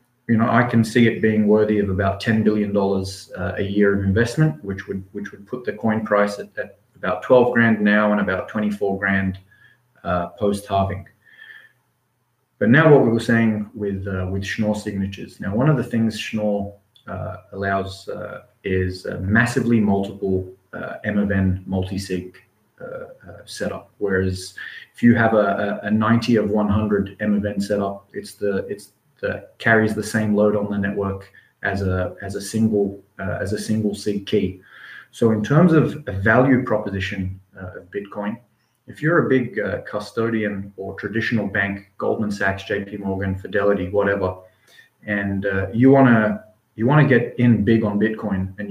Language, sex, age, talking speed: English, male, 30-49, 180 wpm